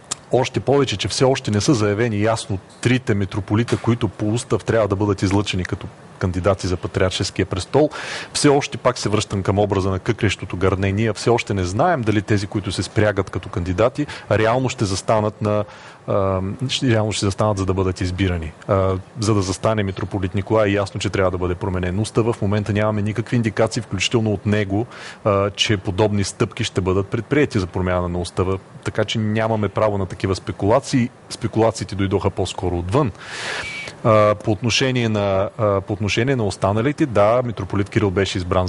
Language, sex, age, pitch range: Bulgarian, male, 30-49, 100-115 Hz